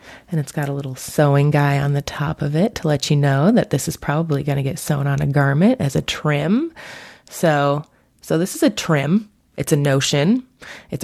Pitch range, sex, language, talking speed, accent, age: 145-180 Hz, female, English, 215 wpm, American, 20-39